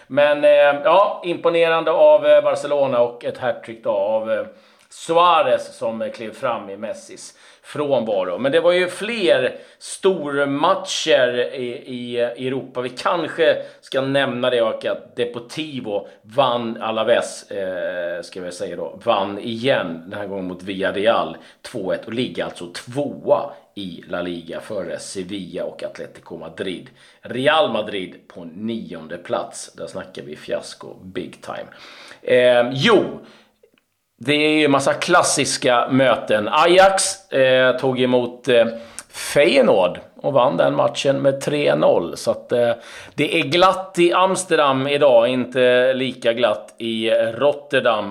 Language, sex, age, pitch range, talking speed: Swedish, male, 40-59, 115-175 Hz, 125 wpm